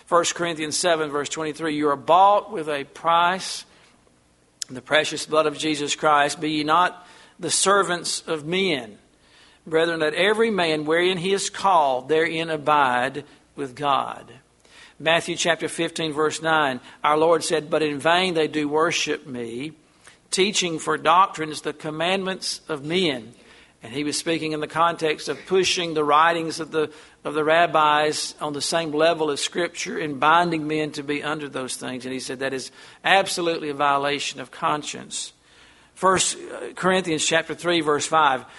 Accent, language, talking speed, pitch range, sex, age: American, English, 165 wpm, 145-170 Hz, male, 50-69